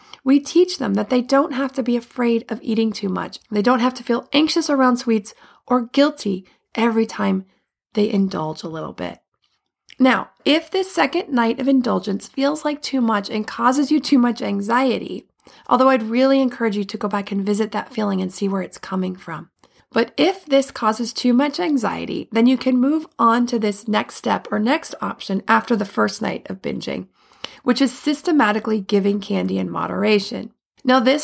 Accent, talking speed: American, 190 wpm